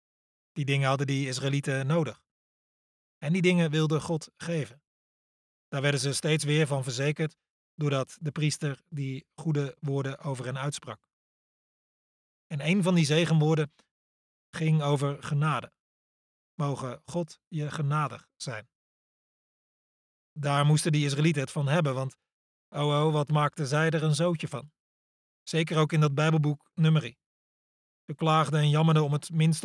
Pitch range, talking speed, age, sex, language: 135-160 Hz, 145 wpm, 30-49, male, Dutch